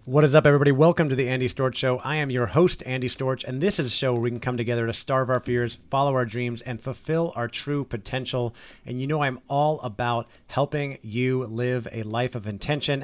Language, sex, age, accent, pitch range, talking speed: English, male, 30-49, American, 120-145 Hz, 235 wpm